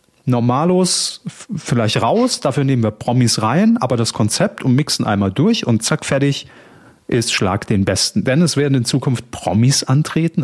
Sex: male